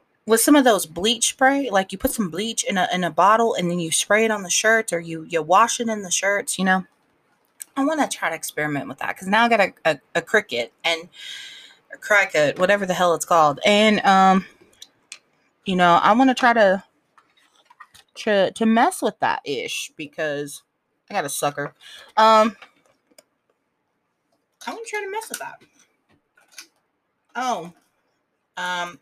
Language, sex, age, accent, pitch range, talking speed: English, female, 30-49, American, 170-240 Hz, 180 wpm